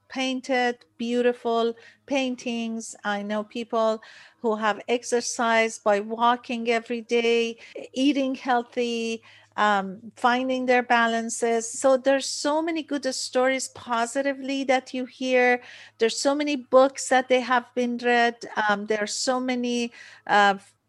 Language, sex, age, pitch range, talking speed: English, female, 50-69, 225-260 Hz, 125 wpm